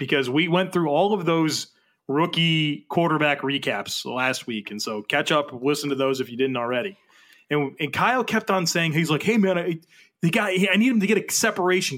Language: English